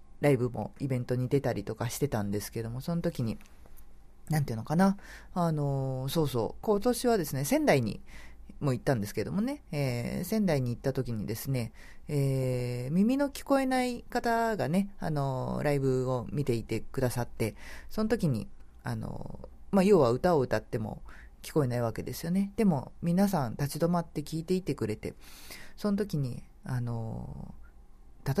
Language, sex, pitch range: Japanese, female, 120-175 Hz